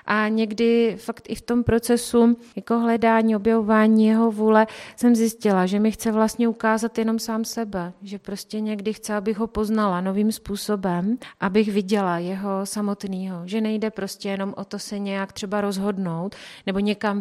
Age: 30-49